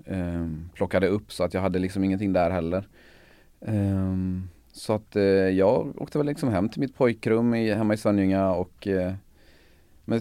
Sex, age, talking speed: male, 30-49, 145 wpm